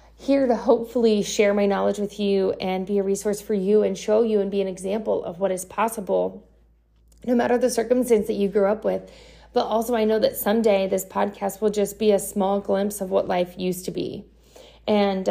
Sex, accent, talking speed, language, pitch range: female, American, 215 wpm, English, 185-225 Hz